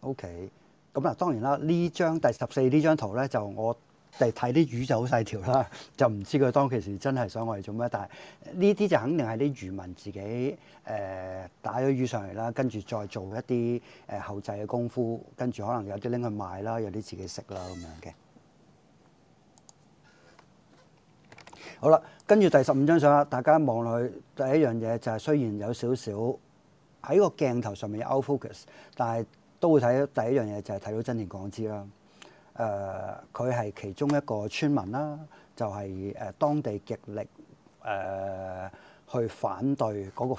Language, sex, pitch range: Japanese, male, 100-135 Hz